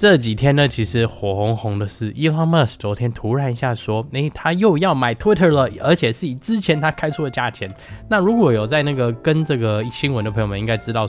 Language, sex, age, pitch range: Chinese, male, 10-29, 105-155 Hz